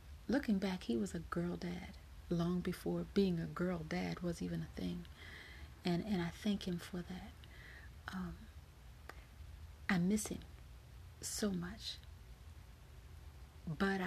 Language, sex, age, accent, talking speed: English, female, 40-59, American, 130 wpm